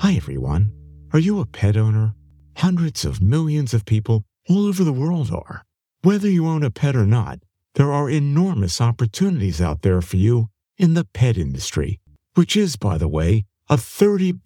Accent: American